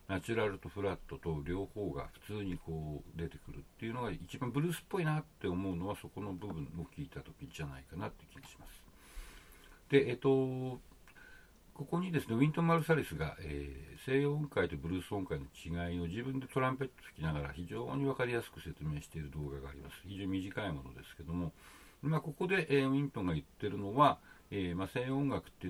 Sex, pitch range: male, 80-130 Hz